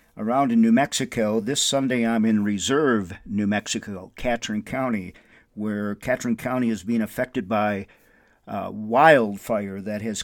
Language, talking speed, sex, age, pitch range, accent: English, 145 wpm, male, 50-69, 110-140 Hz, American